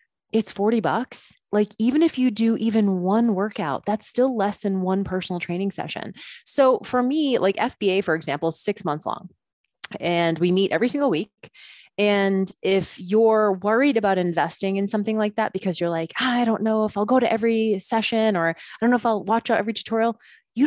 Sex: female